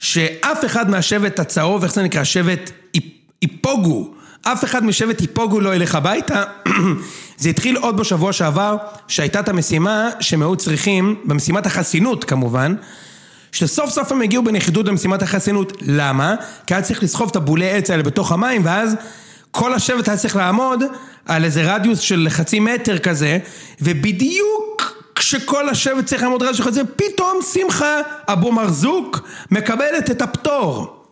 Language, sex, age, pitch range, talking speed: Hebrew, male, 30-49, 175-250 Hz, 145 wpm